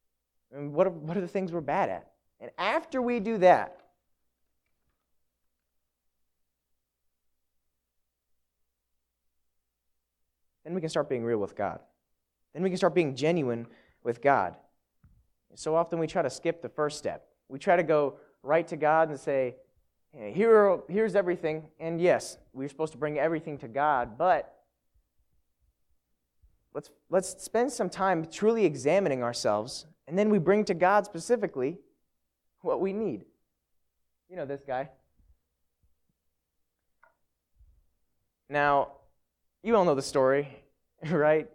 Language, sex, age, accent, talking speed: English, male, 20-39, American, 135 wpm